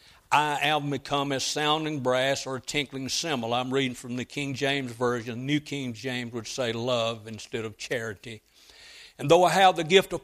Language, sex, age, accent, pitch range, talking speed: English, male, 60-79, American, 140-185 Hz, 195 wpm